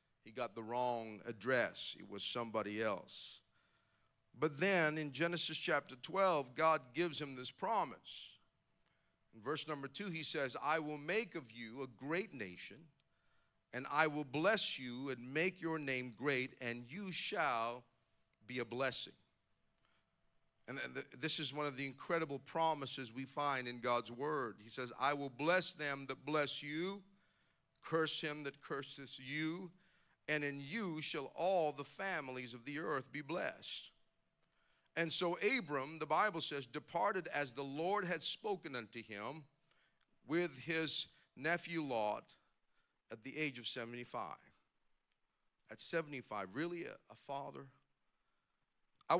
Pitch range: 130-165 Hz